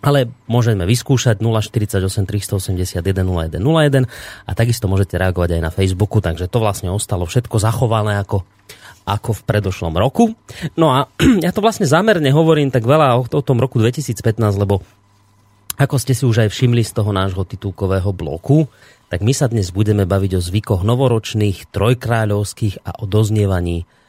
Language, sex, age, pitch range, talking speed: Slovak, male, 30-49, 100-135 Hz, 150 wpm